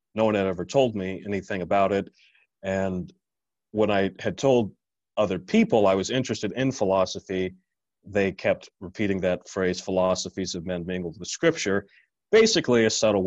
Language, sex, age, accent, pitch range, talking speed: English, male, 40-59, American, 95-115 Hz, 160 wpm